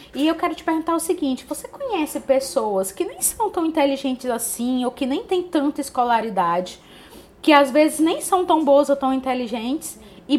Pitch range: 215-300 Hz